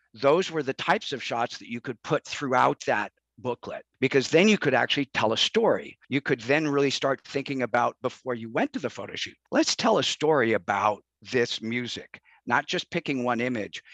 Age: 50-69